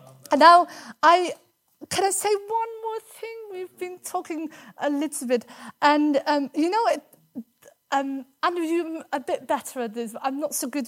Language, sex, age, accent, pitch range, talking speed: English, female, 30-49, British, 245-315 Hz, 165 wpm